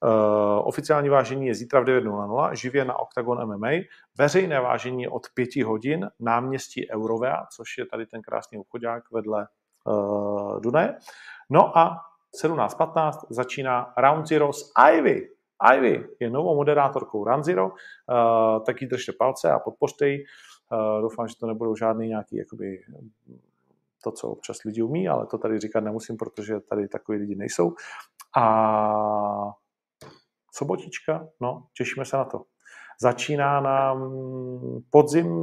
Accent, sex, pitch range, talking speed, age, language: native, male, 110-135 Hz, 140 wpm, 40-59, Czech